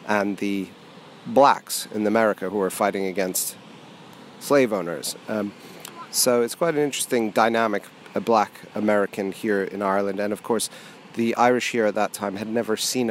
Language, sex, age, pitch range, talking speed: English, male, 30-49, 100-115 Hz, 165 wpm